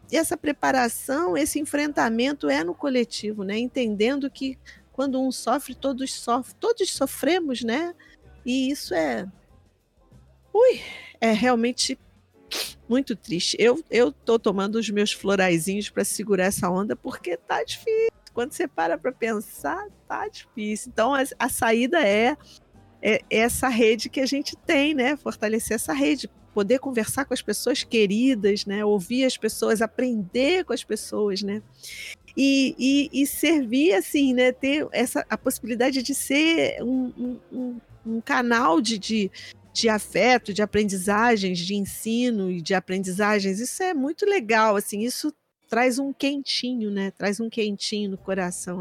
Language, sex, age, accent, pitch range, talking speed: Portuguese, female, 50-69, Brazilian, 215-275 Hz, 145 wpm